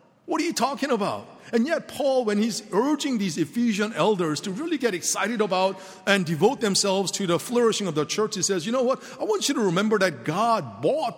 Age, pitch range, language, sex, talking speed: 50-69, 155-215 Hz, English, male, 220 wpm